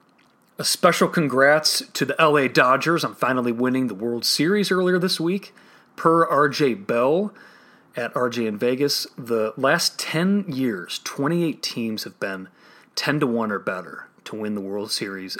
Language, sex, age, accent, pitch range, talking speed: English, male, 30-49, American, 105-140 Hz, 160 wpm